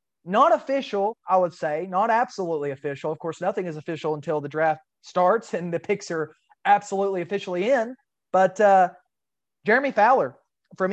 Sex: male